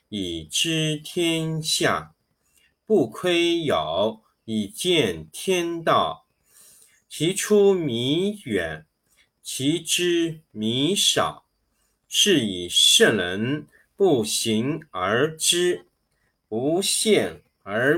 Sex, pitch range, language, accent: male, 110-190 Hz, Chinese, native